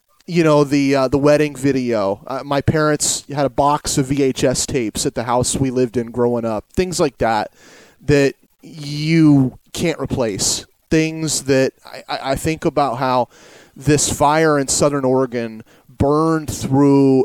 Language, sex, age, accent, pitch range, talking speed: English, male, 30-49, American, 120-145 Hz, 155 wpm